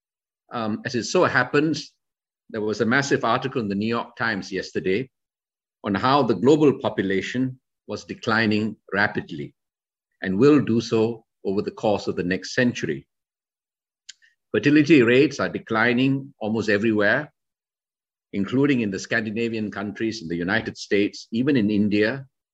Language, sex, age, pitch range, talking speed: English, male, 50-69, 100-130 Hz, 140 wpm